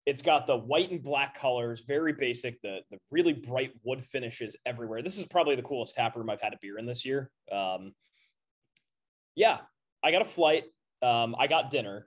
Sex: male